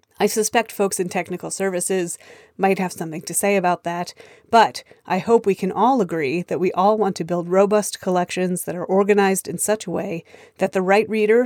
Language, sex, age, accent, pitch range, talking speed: English, female, 30-49, American, 180-215 Hz, 205 wpm